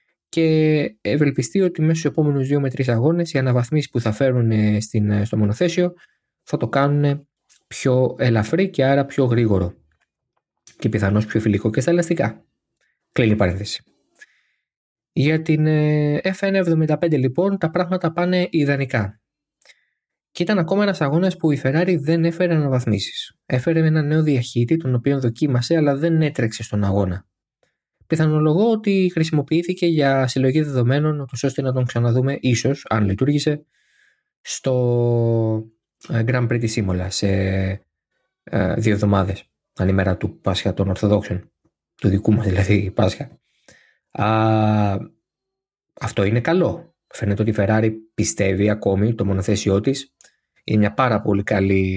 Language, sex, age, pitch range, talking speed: Greek, male, 20-39, 105-155 Hz, 135 wpm